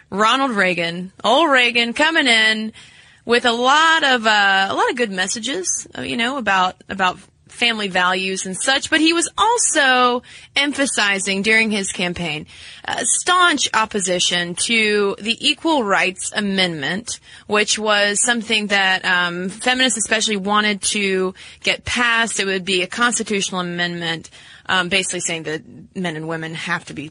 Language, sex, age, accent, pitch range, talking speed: English, female, 20-39, American, 180-240 Hz, 150 wpm